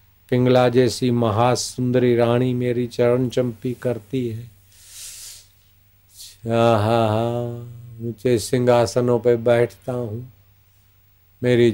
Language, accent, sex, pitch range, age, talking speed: Hindi, native, male, 100-130 Hz, 50-69, 80 wpm